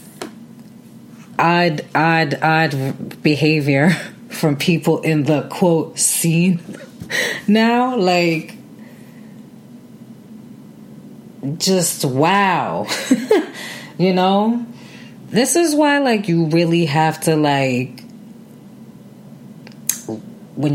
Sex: female